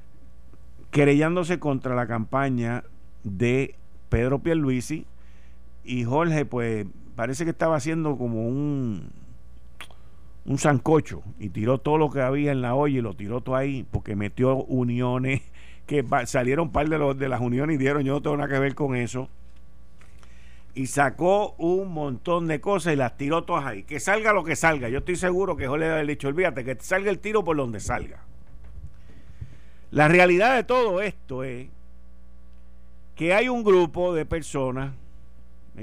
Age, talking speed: 50-69, 165 wpm